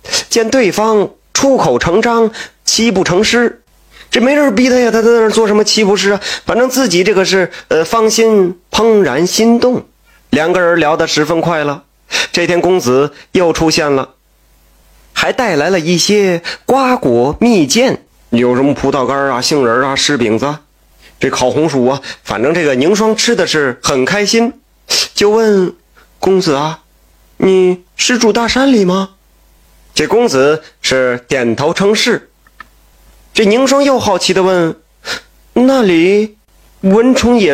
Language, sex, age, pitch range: Chinese, male, 30-49, 150-225 Hz